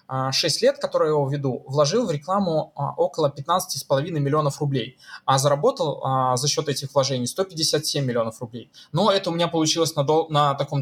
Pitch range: 135-170 Hz